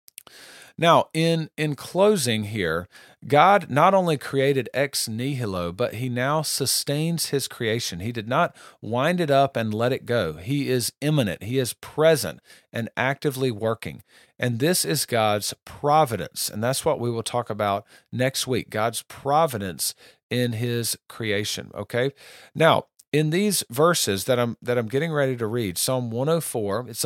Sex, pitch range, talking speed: male, 115-145 Hz, 155 wpm